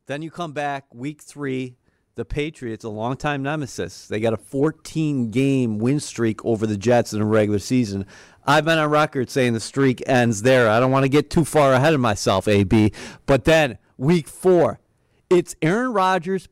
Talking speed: 185 wpm